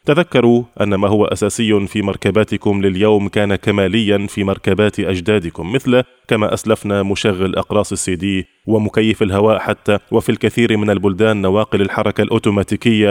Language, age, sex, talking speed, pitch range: Arabic, 20-39, male, 135 wpm, 100-115 Hz